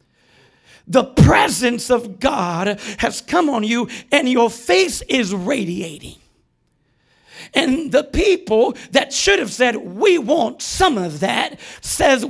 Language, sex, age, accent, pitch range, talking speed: English, male, 40-59, American, 205-245 Hz, 125 wpm